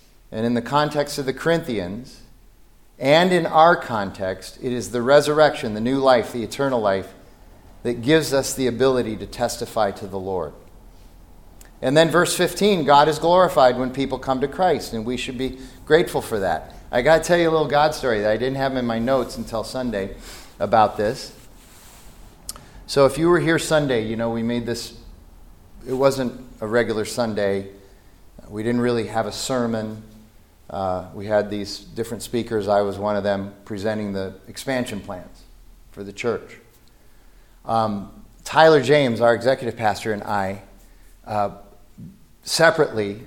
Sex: male